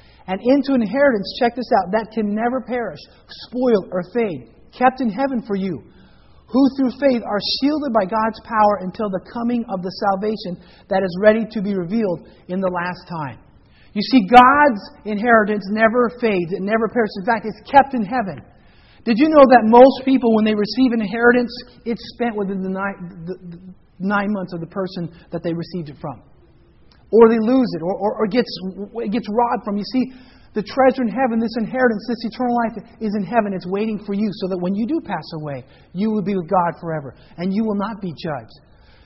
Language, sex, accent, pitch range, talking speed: English, male, American, 190-245 Hz, 200 wpm